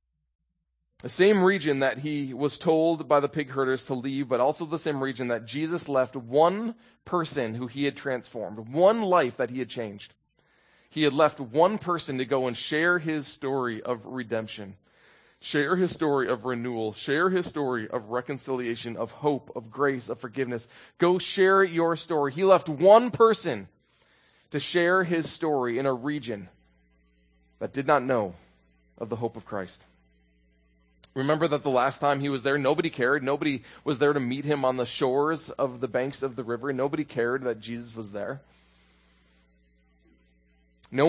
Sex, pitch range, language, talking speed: male, 110-150 Hz, English, 170 wpm